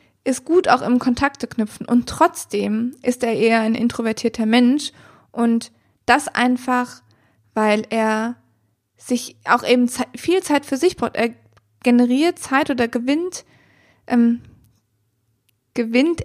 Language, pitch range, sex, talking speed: German, 230-275 Hz, female, 125 wpm